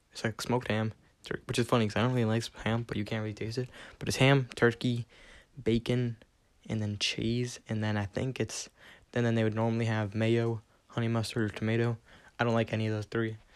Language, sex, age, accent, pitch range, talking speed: English, male, 10-29, American, 105-120 Hz, 220 wpm